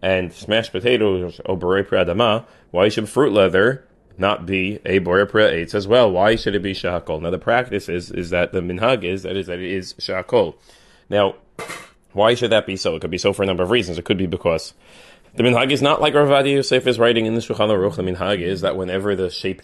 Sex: male